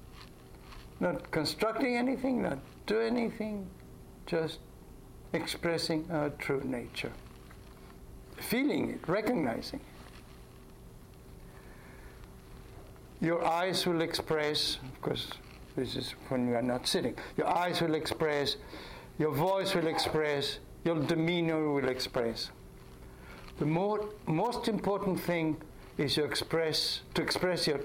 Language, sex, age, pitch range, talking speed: English, male, 60-79, 130-175 Hz, 105 wpm